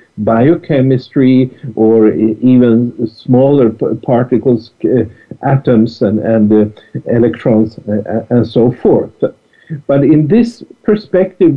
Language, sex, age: English, male, 50-69